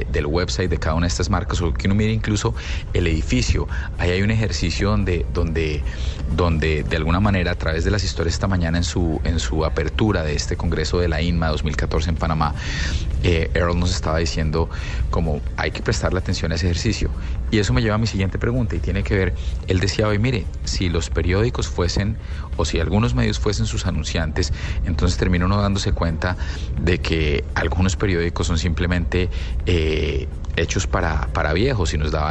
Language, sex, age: Spanish, male, 30-49